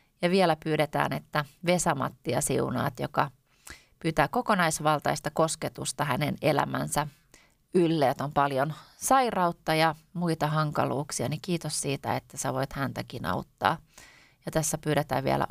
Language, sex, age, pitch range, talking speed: Finnish, female, 30-49, 145-175 Hz, 120 wpm